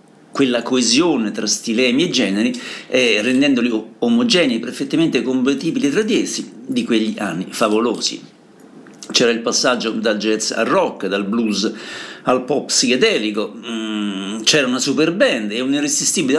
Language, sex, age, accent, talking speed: Italian, male, 60-79, native, 145 wpm